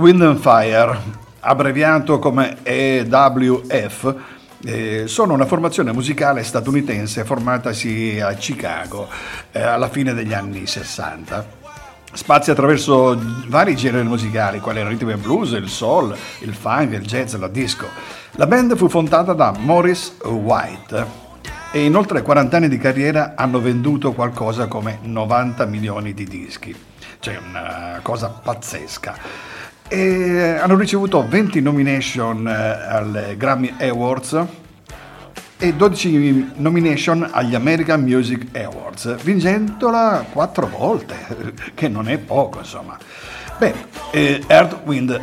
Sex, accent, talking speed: male, native, 115 wpm